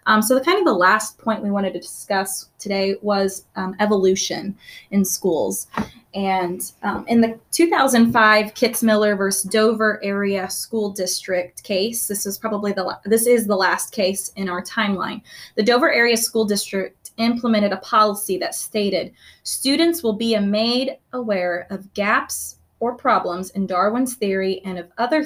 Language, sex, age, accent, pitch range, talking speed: English, female, 20-39, American, 190-225 Hz, 160 wpm